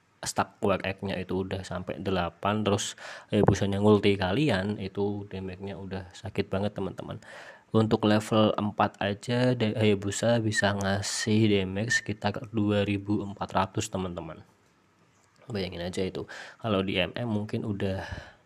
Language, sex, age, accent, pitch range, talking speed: Indonesian, male, 20-39, native, 95-110 Hz, 125 wpm